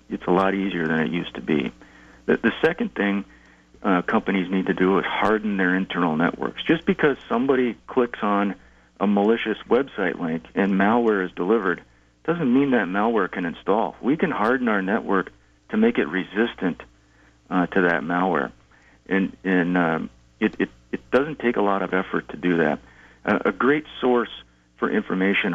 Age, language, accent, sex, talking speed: 40-59, English, American, male, 175 wpm